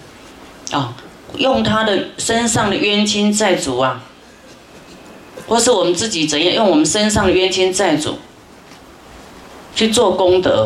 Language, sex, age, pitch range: Chinese, female, 30-49, 160-220 Hz